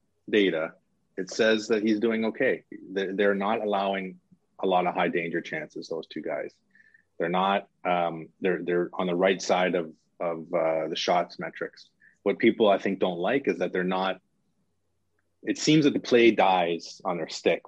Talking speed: 180 wpm